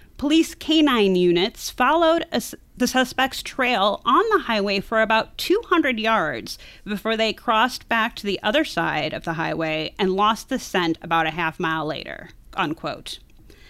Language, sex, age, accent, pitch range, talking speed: English, female, 30-49, American, 190-270 Hz, 155 wpm